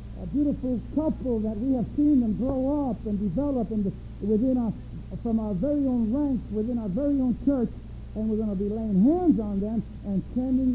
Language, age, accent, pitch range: English, 60-79, American, 185-245 Hz